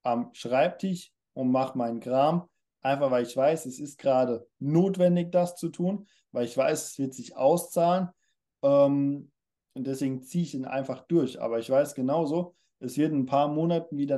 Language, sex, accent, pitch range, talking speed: German, male, German, 125-160 Hz, 180 wpm